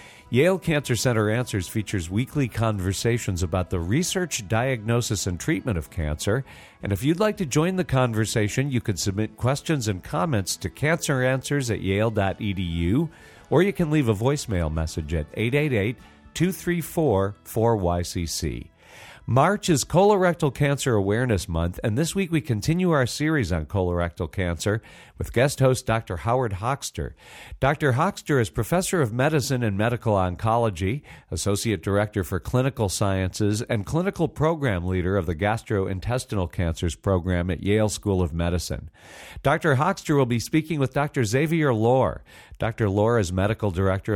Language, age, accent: English, 50-69, American